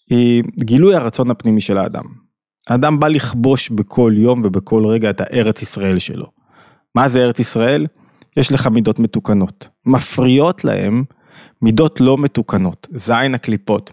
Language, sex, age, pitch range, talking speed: Hebrew, male, 20-39, 115-150 Hz, 140 wpm